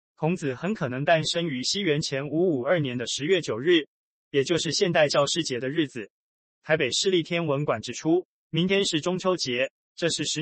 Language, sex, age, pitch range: Chinese, male, 20-39, 140-175 Hz